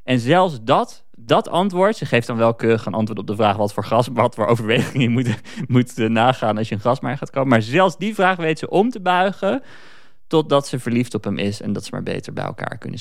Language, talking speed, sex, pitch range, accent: Dutch, 245 wpm, male, 100-125 Hz, Dutch